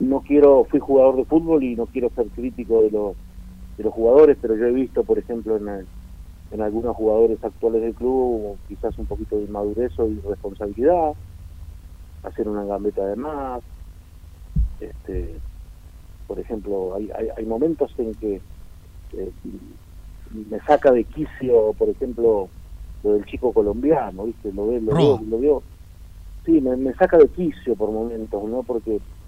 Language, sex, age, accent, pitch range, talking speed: Spanish, male, 50-69, Argentinian, 95-135 Hz, 160 wpm